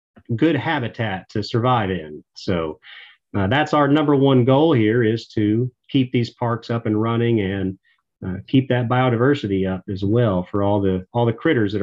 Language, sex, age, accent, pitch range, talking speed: English, male, 40-59, American, 110-135 Hz, 185 wpm